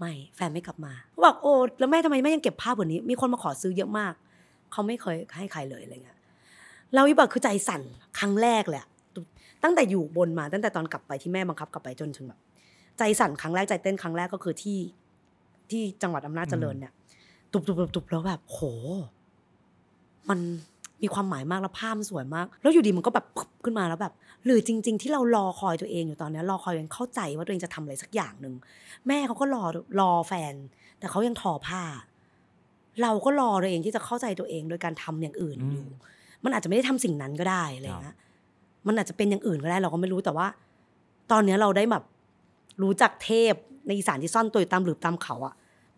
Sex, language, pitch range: female, Thai, 165-220 Hz